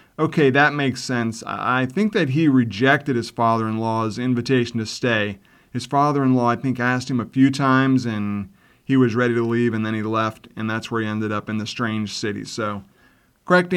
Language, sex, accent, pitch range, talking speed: English, male, American, 115-140 Hz, 195 wpm